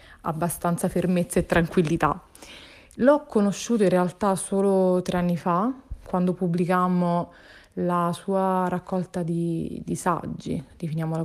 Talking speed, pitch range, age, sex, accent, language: 110 wpm, 165-185 Hz, 20-39, female, native, Italian